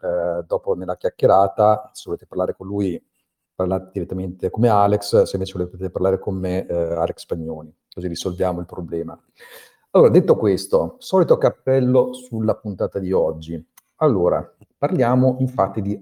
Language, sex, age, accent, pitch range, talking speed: Italian, male, 50-69, native, 95-145 Hz, 145 wpm